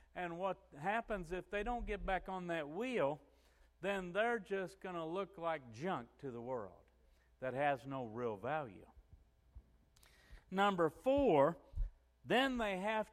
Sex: male